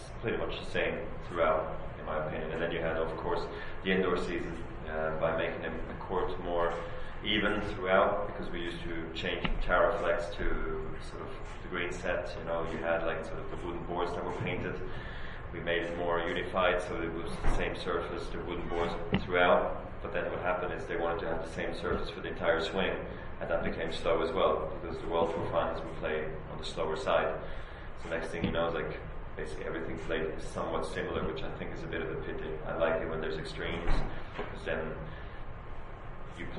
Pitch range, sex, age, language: 80-90 Hz, male, 30-49, English